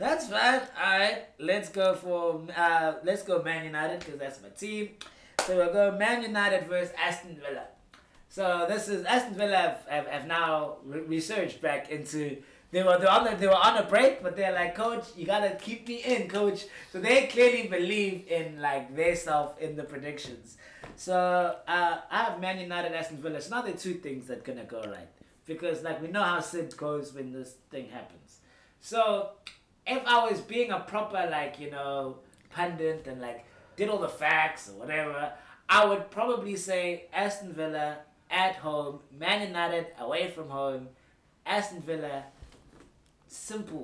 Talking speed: 185 wpm